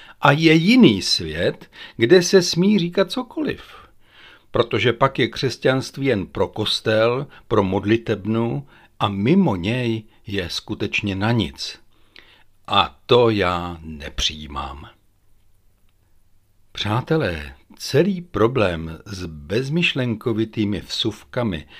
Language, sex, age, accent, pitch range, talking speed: Czech, male, 60-79, native, 90-120 Hz, 95 wpm